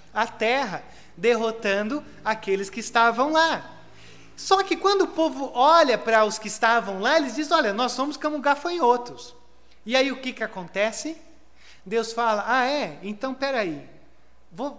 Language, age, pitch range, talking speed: Portuguese, 30-49, 215-300 Hz, 160 wpm